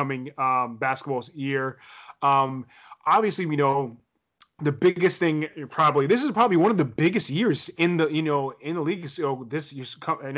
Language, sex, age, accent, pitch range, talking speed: English, male, 20-39, American, 135-170 Hz, 185 wpm